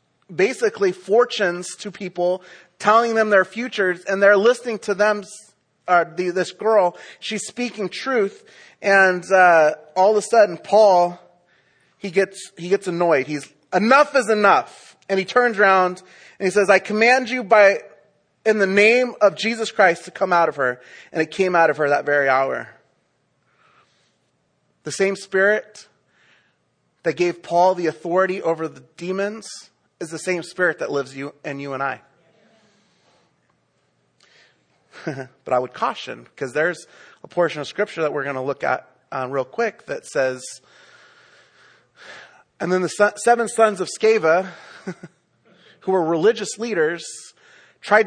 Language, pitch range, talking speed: English, 165-210 Hz, 150 wpm